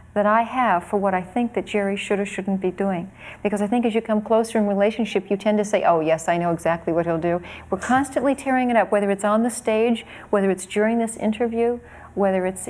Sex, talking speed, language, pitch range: female, 245 wpm, English, 185-210 Hz